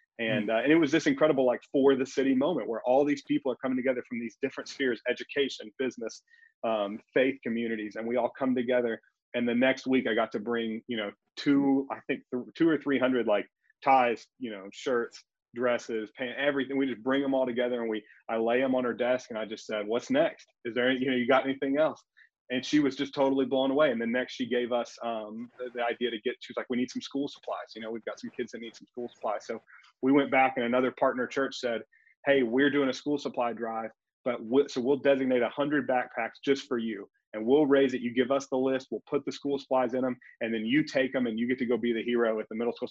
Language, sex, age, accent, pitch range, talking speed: English, male, 30-49, American, 115-135 Hz, 255 wpm